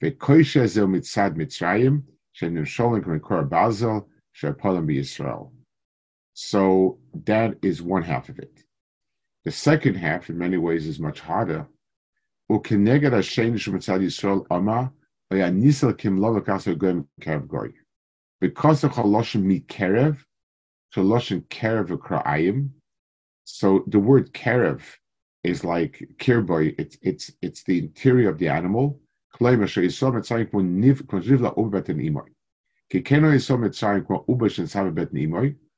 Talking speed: 55 wpm